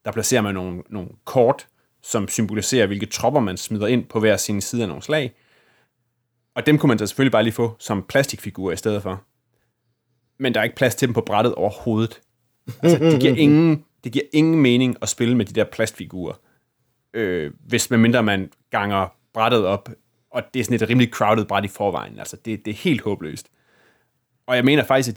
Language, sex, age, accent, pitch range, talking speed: Danish, male, 30-49, native, 110-125 Hz, 200 wpm